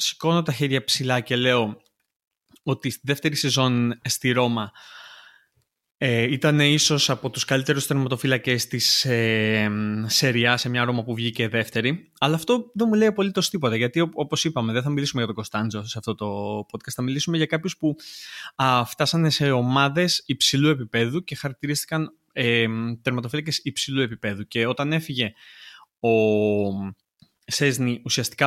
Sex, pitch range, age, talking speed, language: male, 120-160 Hz, 20-39, 150 wpm, Greek